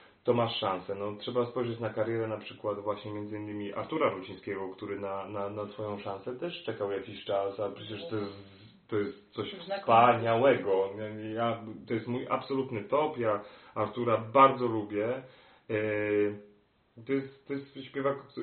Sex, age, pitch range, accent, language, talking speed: male, 30-49, 105-130 Hz, native, Polish, 155 wpm